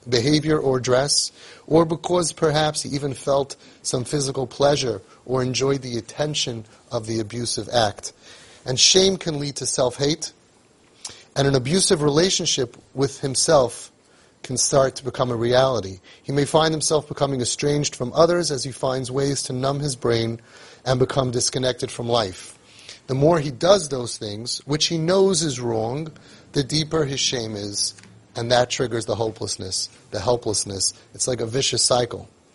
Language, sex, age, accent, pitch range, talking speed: English, male, 30-49, American, 120-155 Hz, 160 wpm